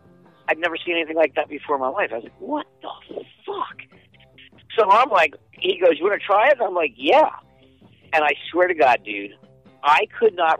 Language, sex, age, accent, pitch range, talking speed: English, male, 50-69, American, 130-215 Hz, 220 wpm